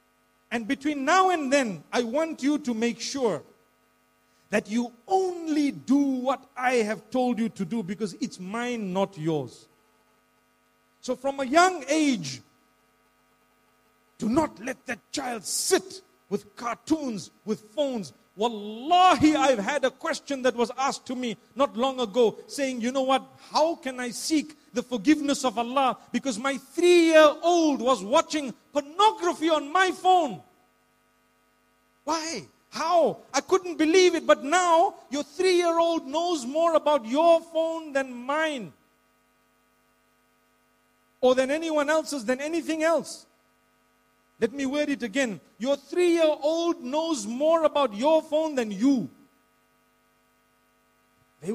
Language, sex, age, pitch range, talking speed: English, male, 50-69, 240-315 Hz, 135 wpm